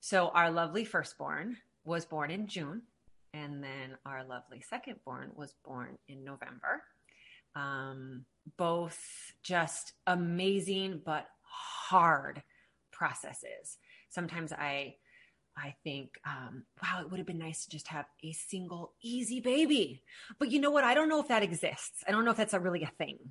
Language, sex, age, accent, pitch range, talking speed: English, female, 30-49, American, 155-220 Hz, 155 wpm